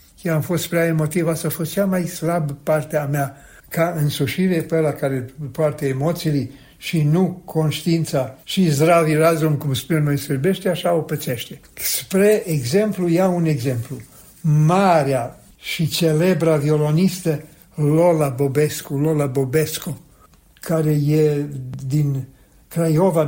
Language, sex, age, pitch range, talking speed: Romanian, male, 60-79, 145-170 Hz, 125 wpm